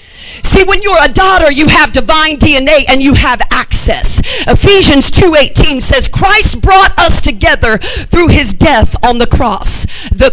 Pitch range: 295-420 Hz